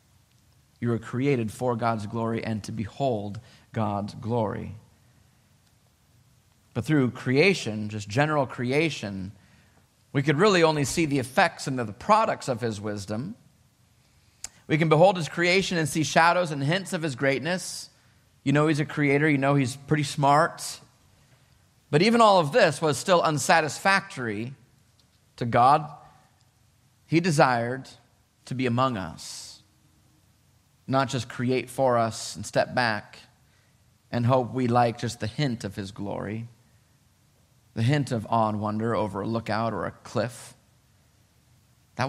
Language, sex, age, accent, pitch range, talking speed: English, male, 30-49, American, 115-155 Hz, 145 wpm